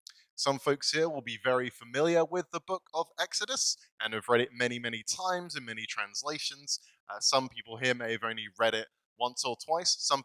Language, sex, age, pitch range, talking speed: English, male, 20-39, 115-140 Hz, 205 wpm